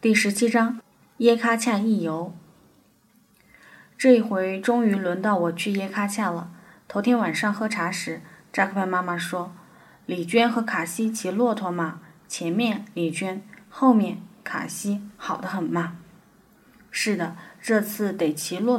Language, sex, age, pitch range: Chinese, female, 20-39, 175-210 Hz